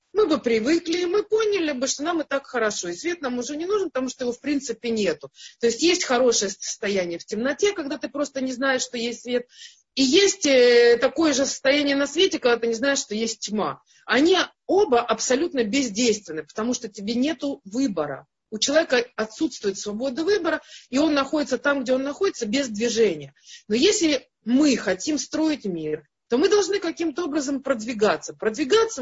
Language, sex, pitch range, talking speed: Russian, female, 220-315 Hz, 180 wpm